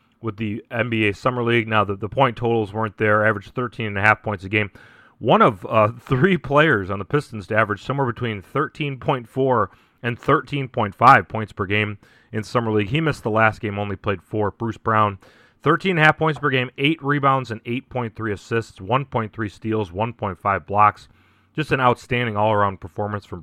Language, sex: English, male